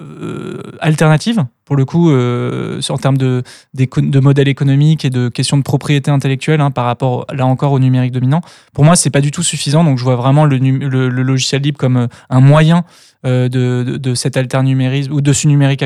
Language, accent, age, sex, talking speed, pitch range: French, French, 20-39, male, 220 wpm, 130-150 Hz